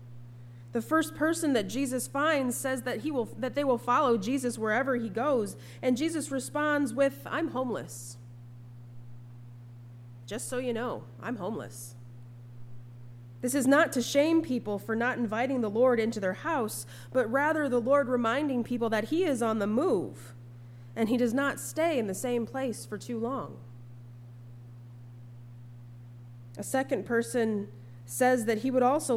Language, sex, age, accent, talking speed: English, female, 20-39, American, 150 wpm